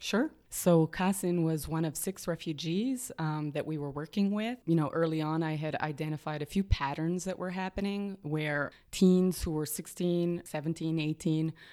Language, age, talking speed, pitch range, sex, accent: English, 20-39, 170 wpm, 155-180 Hz, female, American